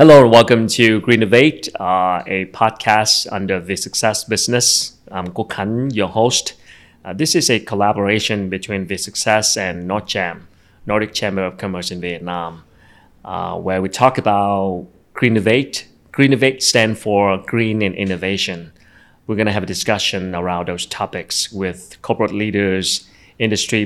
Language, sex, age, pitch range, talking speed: Vietnamese, male, 30-49, 90-110 Hz, 145 wpm